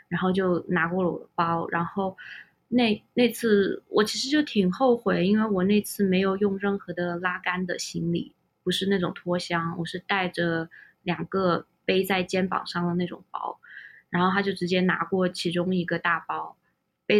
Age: 20-39